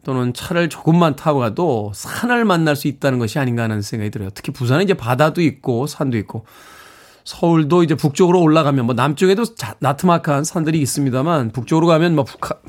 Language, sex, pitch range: Korean, male, 130-170 Hz